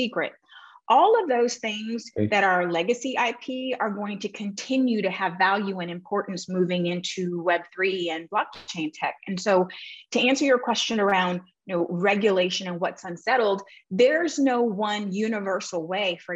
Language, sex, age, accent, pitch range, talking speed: English, female, 30-49, American, 180-220 Hz, 145 wpm